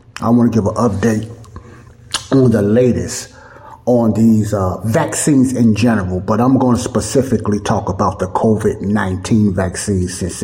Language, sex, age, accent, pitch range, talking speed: English, male, 60-79, American, 105-125 Hz, 155 wpm